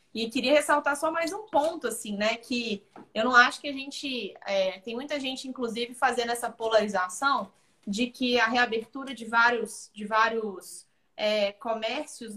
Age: 20-39